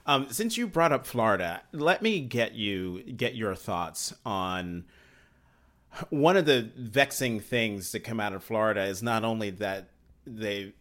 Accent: American